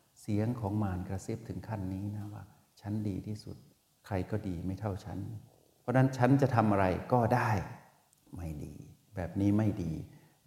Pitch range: 95-120 Hz